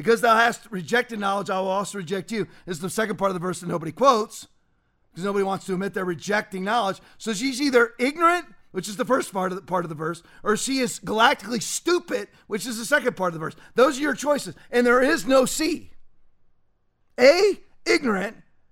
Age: 40-59